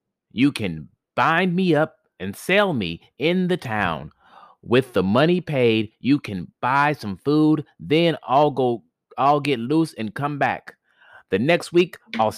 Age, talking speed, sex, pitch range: 30-49, 160 wpm, male, 105-160 Hz